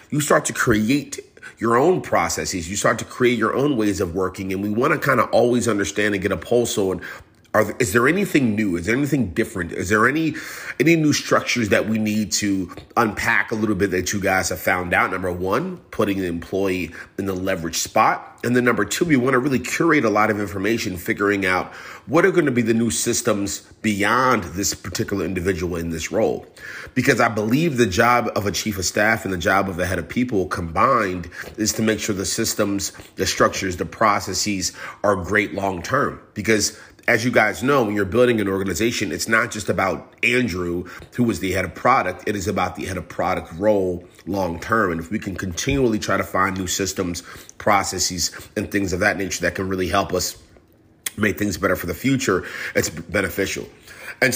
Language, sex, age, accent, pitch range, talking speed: English, male, 30-49, American, 95-115 Hz, 210 wpm